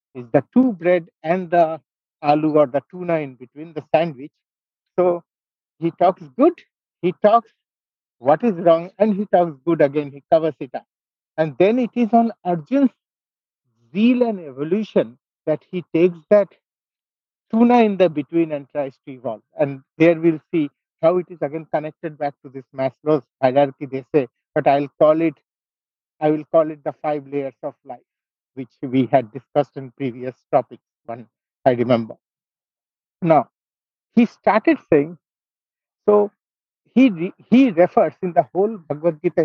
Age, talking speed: 50-69, 160 wpm